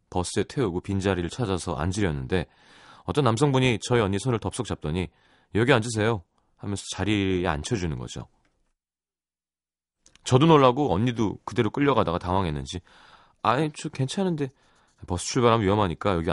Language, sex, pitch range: Korean, male, 90-135 Hz